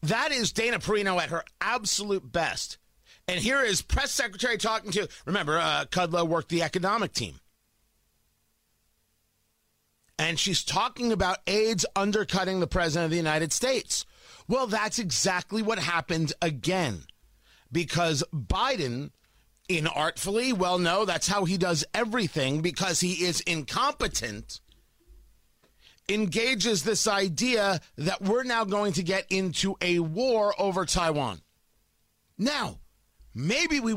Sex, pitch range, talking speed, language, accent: male, 160-205 Hz, 125 wpm, English, American